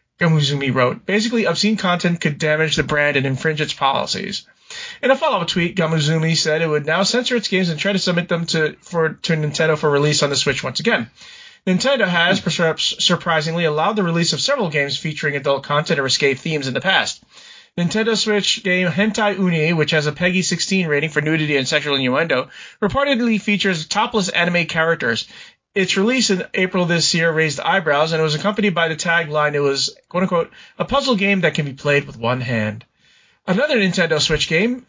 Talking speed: 195 wpm